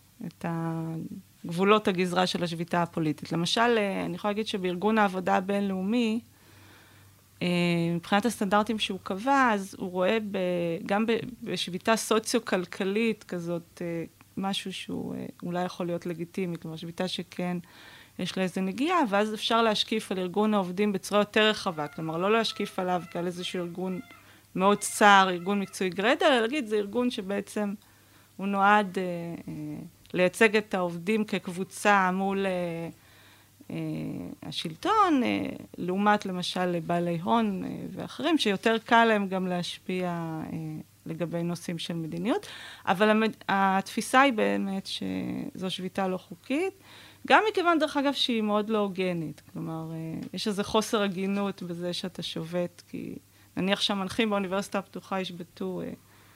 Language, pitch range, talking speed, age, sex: Hebrew, 175-215 Hz, 130 wpm, 20-39, female